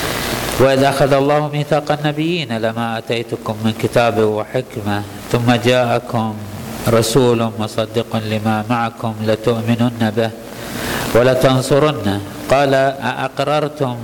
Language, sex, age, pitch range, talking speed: Arabic, male, 50-69, 110-125 Hz, 90 wpm